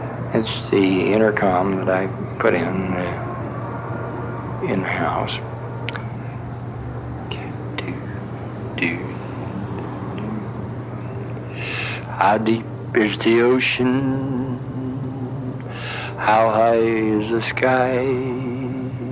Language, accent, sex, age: English, American, male, 60-79